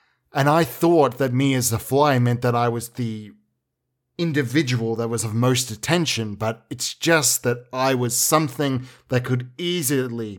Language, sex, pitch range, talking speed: English, male, 120-145 Hz, 170 wpm